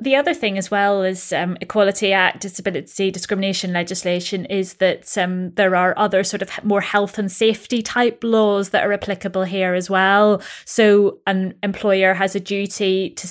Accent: British